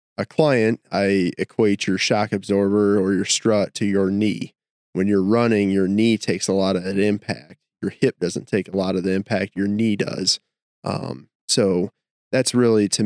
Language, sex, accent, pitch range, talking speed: English, male, American, 95-110 Hz, 190 wpm